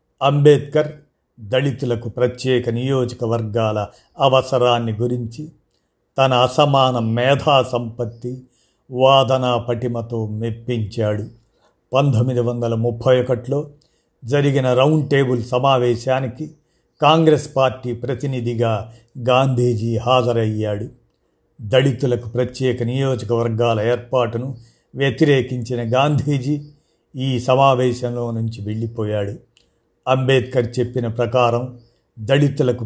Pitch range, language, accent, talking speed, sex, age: 115-130 Hz, Telugu, native, 75 wpm, male, 50-69